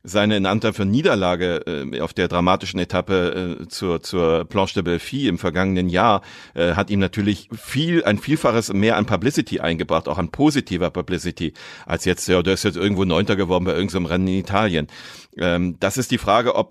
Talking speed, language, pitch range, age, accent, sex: 200 wpm, German, 95-115 Hz, 40-59, German, male